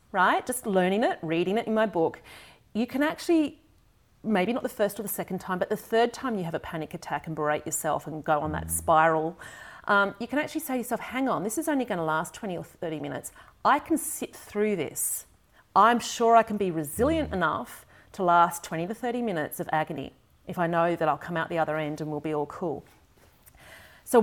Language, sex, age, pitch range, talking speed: English, female, 40-59, 160-225 Hz, 230 wpm